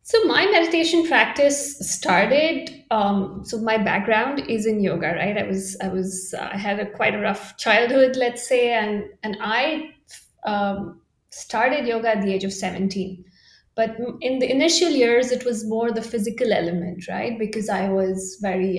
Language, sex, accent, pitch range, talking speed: English, female, Indian, 200-265 Hz, 170 wpm